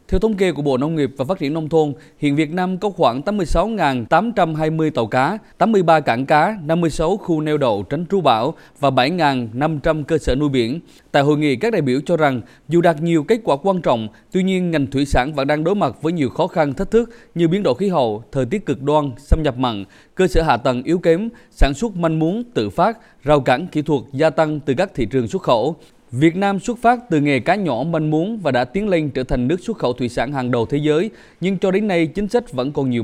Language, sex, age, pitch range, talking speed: Vietnamese, male, 20-39, 135-180 Hz, 245 wpm